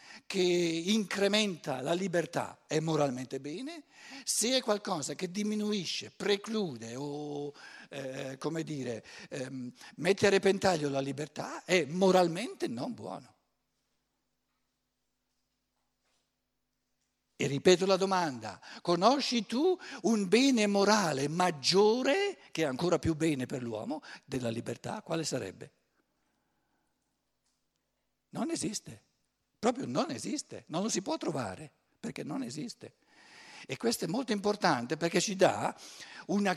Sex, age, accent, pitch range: male, 60-79, native, 155-215 Hz